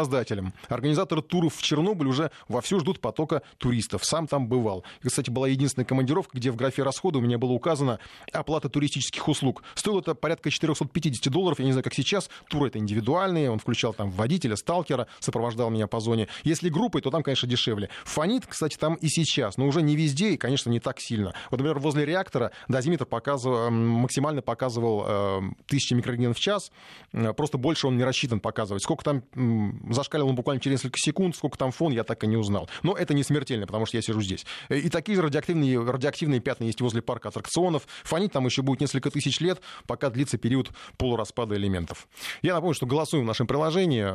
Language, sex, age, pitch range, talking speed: Russian, male, 20-39, 115-150 Hz, 190 wpm